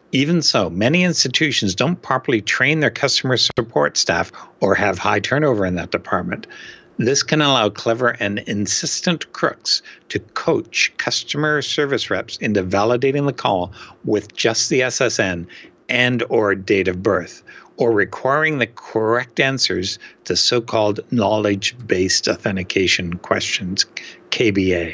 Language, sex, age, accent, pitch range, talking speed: English, male, 60-79, American, 100-120 Hz, 130 wpm